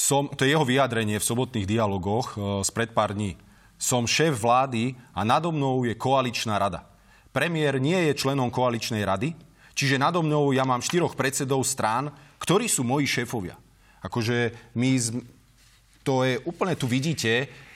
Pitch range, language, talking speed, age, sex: 115-140 Hz, Slovak, 160 wpm, 30-49, male